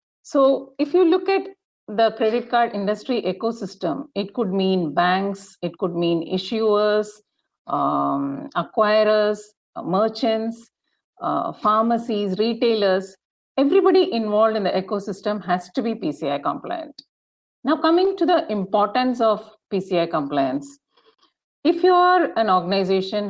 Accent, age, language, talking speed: Indian, 50-69, English, 125 wpm